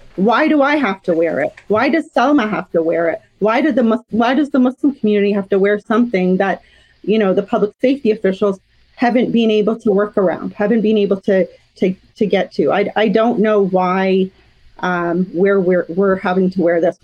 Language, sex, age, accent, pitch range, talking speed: English, female, 30-49, American, 195-240 Hz, 215 wpm